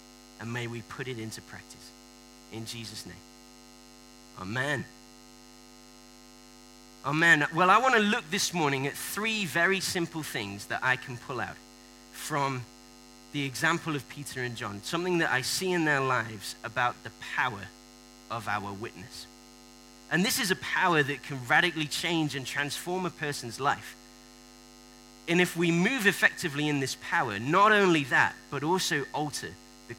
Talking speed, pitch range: 155 wpm, 120-150 Hz